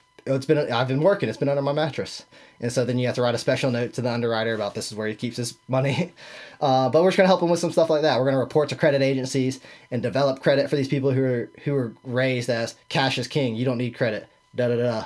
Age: 20-39